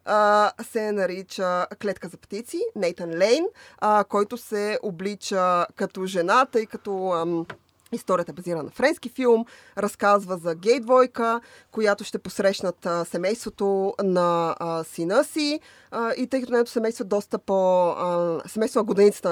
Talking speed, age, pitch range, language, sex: 120 wpm, 20-39, 190-260 Hz, Bulgarian, female